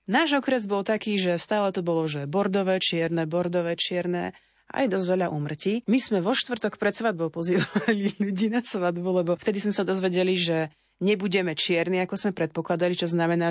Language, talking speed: Slovak, 180 wpm